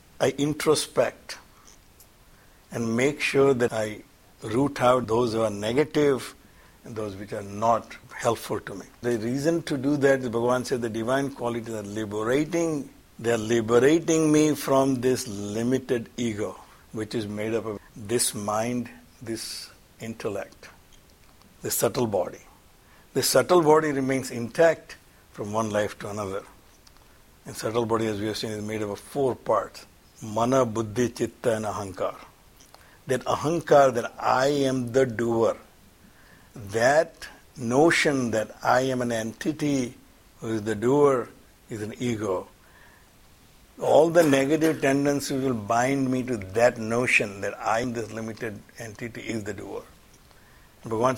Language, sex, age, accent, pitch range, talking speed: English, male, 60-79, Indian, 110-135 Hz, 145 wpm